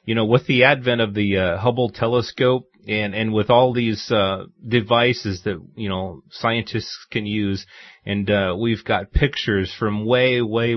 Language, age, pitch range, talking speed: English, 30-49, 105-130 Hz, 175 wpm